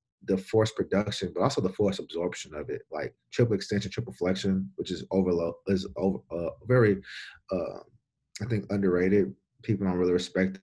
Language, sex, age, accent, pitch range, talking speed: English, male, 30-49, American, 90-100 Hz, 170 wpm